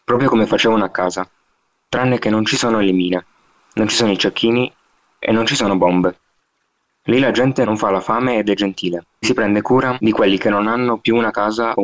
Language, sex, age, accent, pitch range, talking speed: Italian, male, 20-39, native, 95-115 Hz, 225 wpm